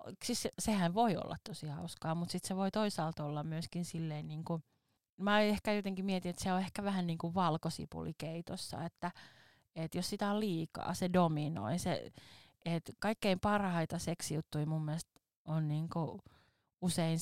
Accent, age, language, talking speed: native, 30-49, Finnish, 165 wpm